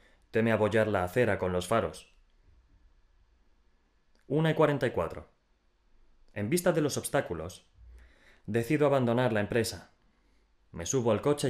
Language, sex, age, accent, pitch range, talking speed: Spanish, male, 30-49, Spanish, 90-125 Hz, 120 wpm